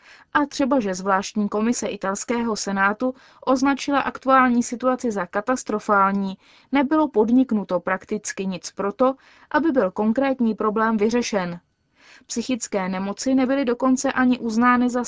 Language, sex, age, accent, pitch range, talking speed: Czech, female, 20-39, native, 200-255 Hz, 115 wpm